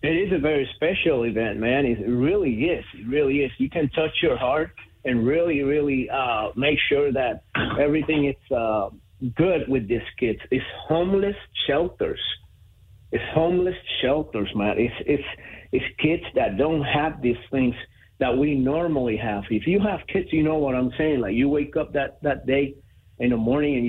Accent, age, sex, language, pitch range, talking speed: American, 50-69, male, English, 120-160 Hz, 180 wpm